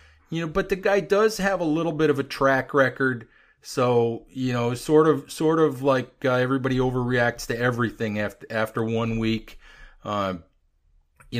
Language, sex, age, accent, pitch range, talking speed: English, male, 40-59, American, 120-145 Hz, 180 wpm